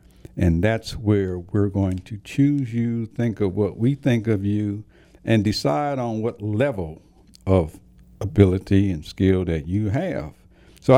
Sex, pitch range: male, 95-125 Hz